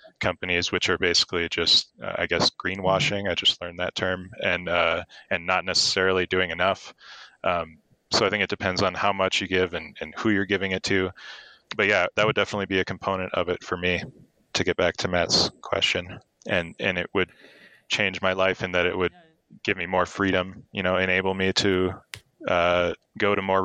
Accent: American